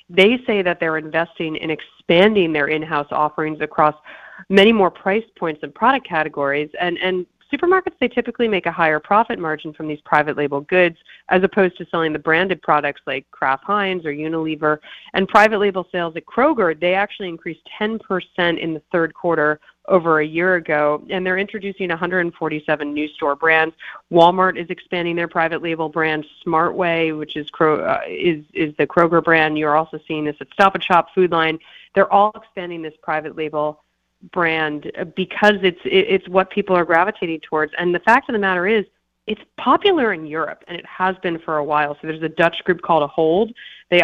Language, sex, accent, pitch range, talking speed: English, female, American, 155-190 Hz, 185 wpm